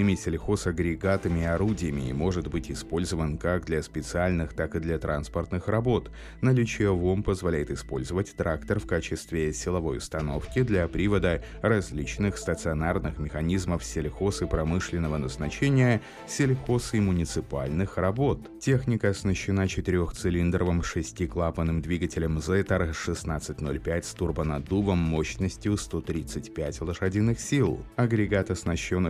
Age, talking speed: 30-49, 105 wpm